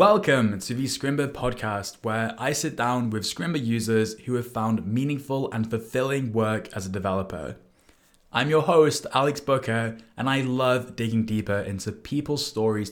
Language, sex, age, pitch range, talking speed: English, male, 20-39, 110-135 Hz, 165 wpm